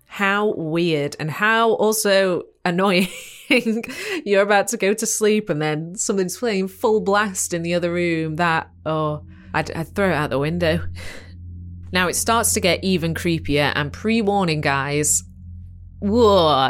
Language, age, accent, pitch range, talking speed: English, 20-39, British, 145-200 Hz, 150 wpm